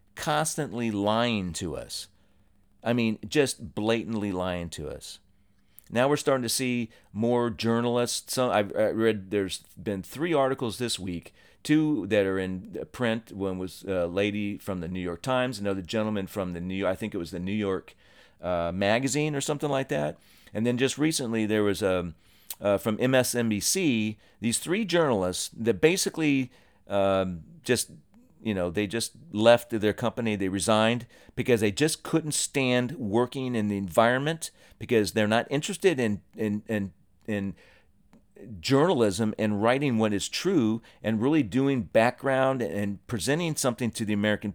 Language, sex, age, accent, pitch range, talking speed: English, male, 40-59, American, 100-120 Hz, 160 wpm